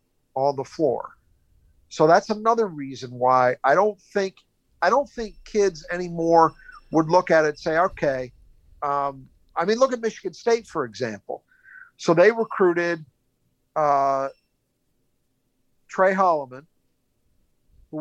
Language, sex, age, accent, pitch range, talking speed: English, male, 50-69, American, 140-190 Hz, 130 wpm